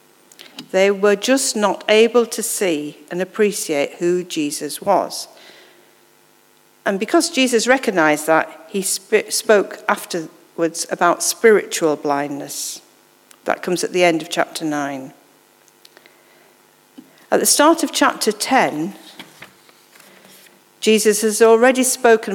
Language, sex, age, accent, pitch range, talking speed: English, female, 50-69, British, 170-230 Hz, 110 wpm